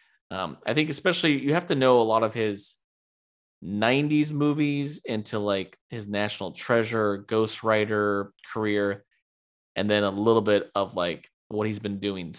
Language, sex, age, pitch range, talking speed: English, male, 20-39, 100-120 Hz, 155 wpm